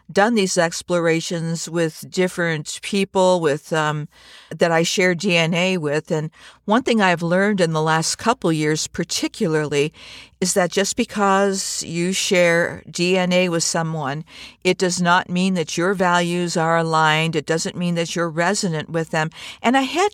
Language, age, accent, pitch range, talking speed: English, 50-69, American, 165-195 Hz, 160 wpm